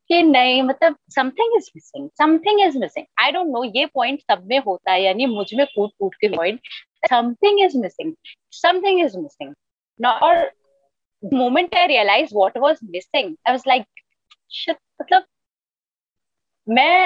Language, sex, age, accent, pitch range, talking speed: Hindi, female, 30-49, native, 190-295 Hz, 40 wpm